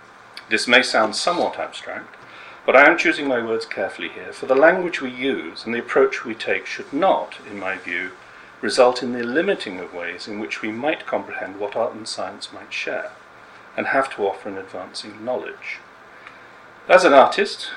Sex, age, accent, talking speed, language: male, 40-59, British, 185 wpm, English